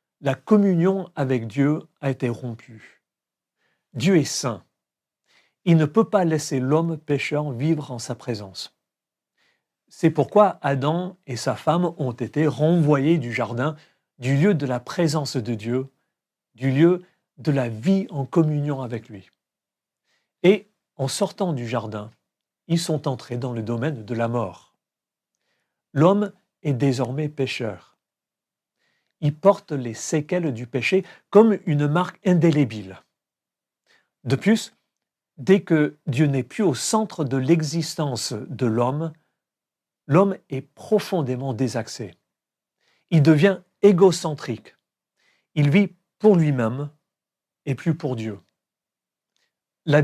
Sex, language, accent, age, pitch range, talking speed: male, French, French, 50-69, 130-175 Hz, 125 wpm